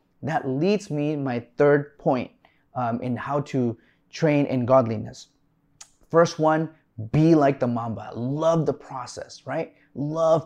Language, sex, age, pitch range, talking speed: English, male, 30-49, 130-160 Hz, 140 wpm